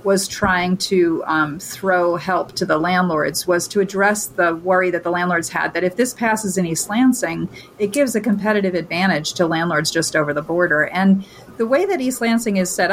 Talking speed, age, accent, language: 205 wpm, 40-59, American, English